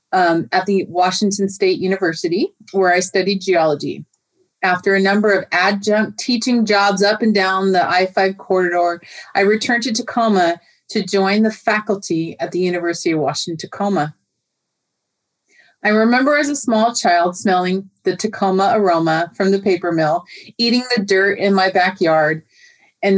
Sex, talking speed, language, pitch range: female, 150 wpm, English, 180-220 Hz